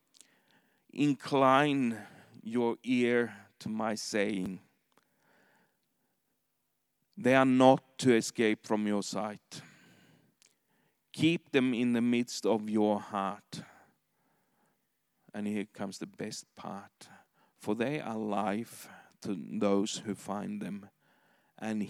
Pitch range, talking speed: 105-120 Hz, 105 wpm